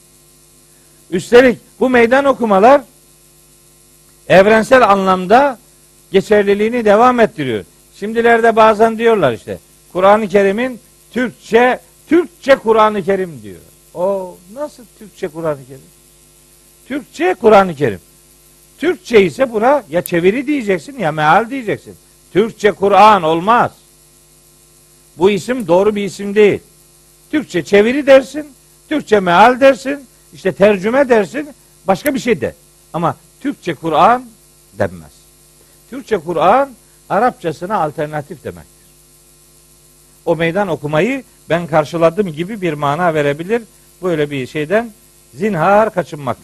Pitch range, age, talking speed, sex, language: 170-240 Hz, 60-79, 105 wpm, male, Turkish